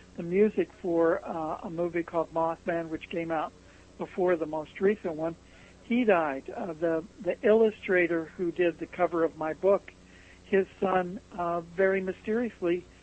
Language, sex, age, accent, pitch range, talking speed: English, male, 60-79, American, 160-185 Hz, 155 wpm